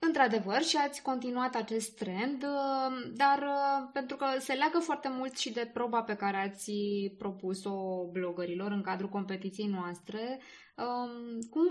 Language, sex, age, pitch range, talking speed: Romanian, female, 20-39, 195-245 Hz, 135 wpm